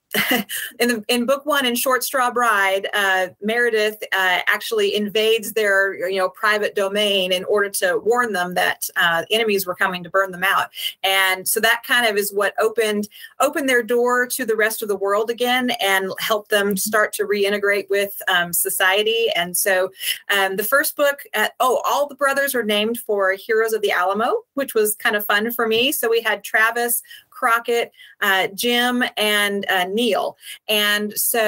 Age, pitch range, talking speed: 30-49, 200-245 Hz, 185 wpm